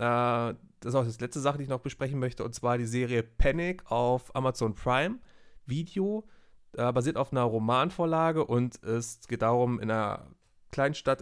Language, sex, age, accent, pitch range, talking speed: German, male, 30-49, German, 115-145 Hz, 170 wpm